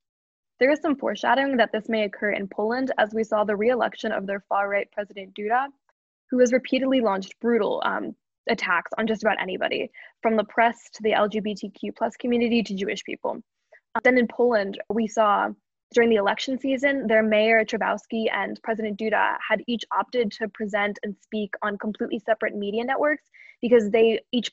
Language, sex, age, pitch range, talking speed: English, female, 10-29, 205-240 Hz, 175 wpm